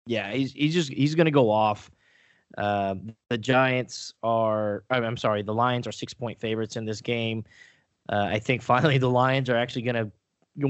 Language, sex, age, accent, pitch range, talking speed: English, male, 20-39, American, 105-130 Hz, 165 wpm